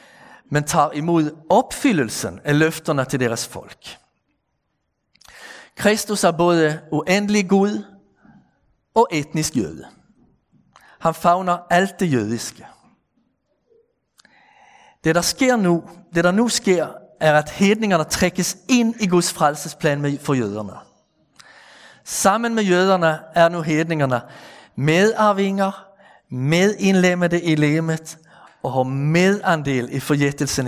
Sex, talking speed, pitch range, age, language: male, 110 wpm, 145-190 Hz, 50-69, Danish